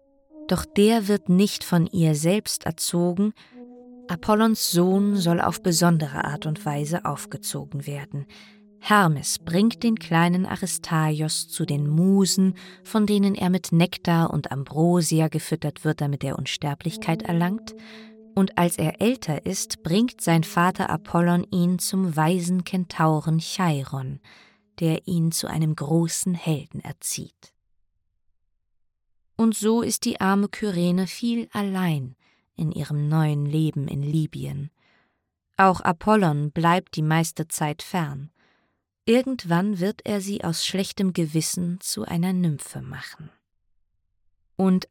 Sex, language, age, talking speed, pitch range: female, German, 20-39, 125 wpm, 150-195 Hz